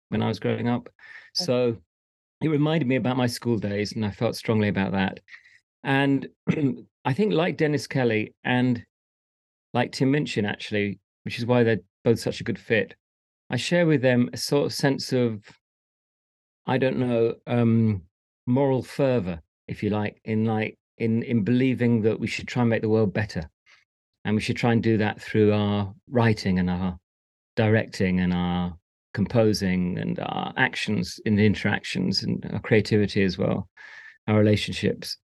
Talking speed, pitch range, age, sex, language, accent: 170 wpm, 105-125 Hz, 40-59, male, English, British